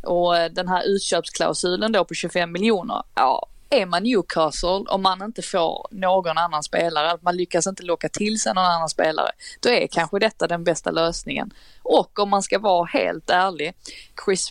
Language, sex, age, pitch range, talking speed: Swedish, female, 20-39, 165-195 Hz, 180 wpm